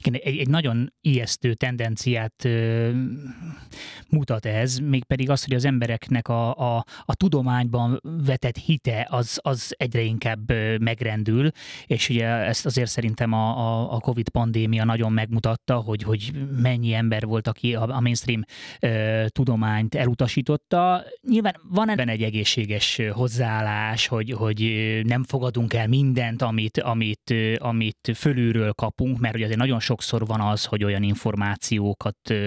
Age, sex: 20-39, male